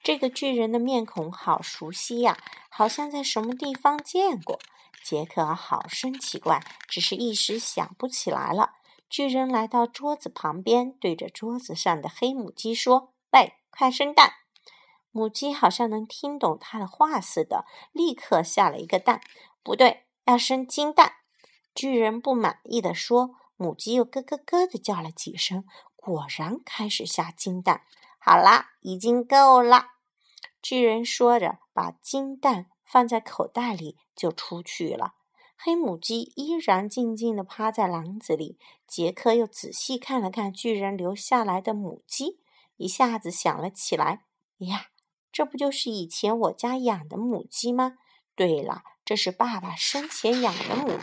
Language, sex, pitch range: Chinese, female, 200-270 Hz